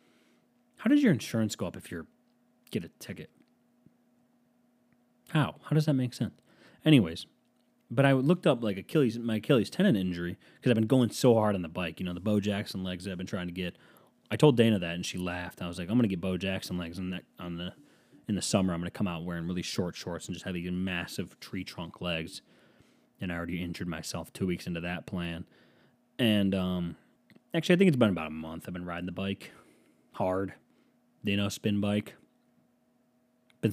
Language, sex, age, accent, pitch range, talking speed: English, male, 30-49, American, 90-125 Hz, 215 wpm